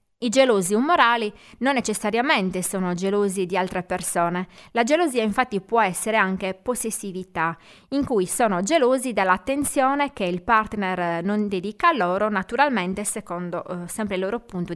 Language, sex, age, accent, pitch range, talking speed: Italian, female, 20-39, native, 185-250 Hz, 145 wpm